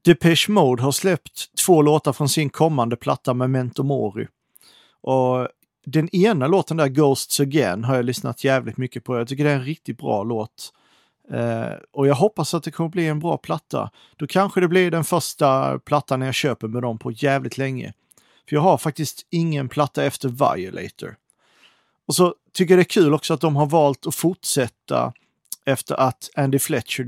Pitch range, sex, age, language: 125-165 Hz, male, 40-59, Swedish